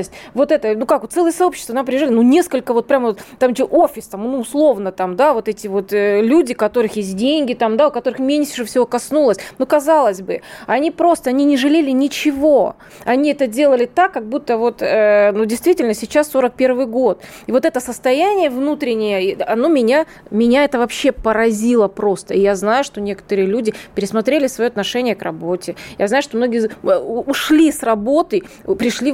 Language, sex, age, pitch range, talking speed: Russian, female, 20-39, 210-280 Hz, 180 wpm